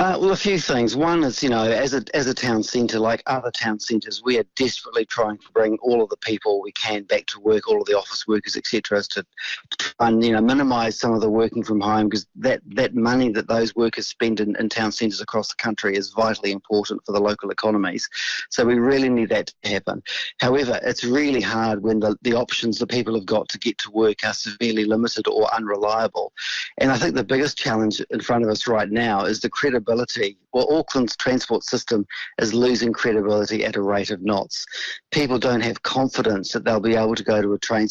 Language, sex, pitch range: English, male, 110-120 Hz